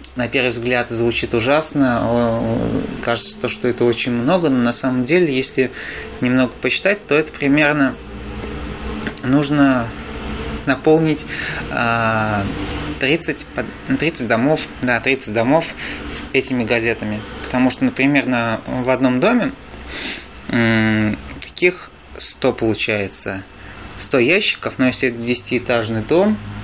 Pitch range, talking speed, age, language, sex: 110-135 Hz, 105 wpm, 20-39, Russian, male